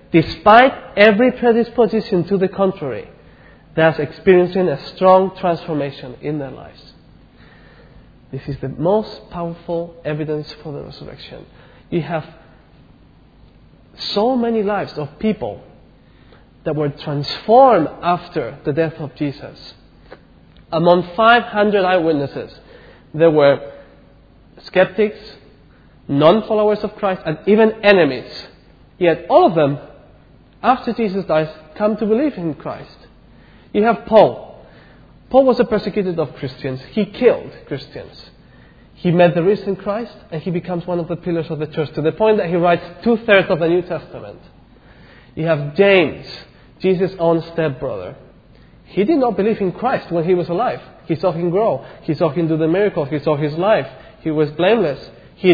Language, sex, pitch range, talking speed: English, male, 155-205 Hz, 145 wpm